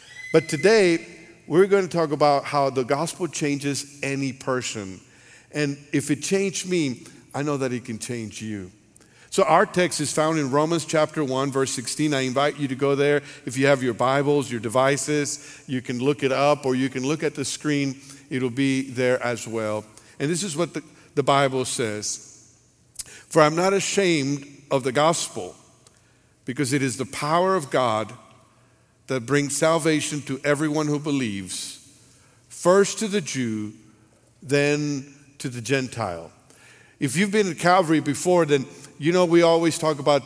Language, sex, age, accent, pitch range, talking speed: English, male, 50-69, American, 130-155 Hz, 175 wpm